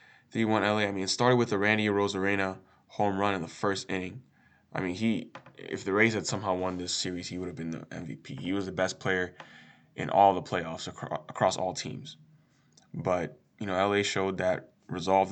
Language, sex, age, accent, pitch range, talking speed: English, male, 10-29, American, 95-120 Hz, 200 wpm